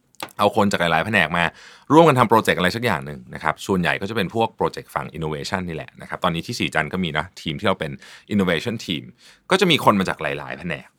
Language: Thai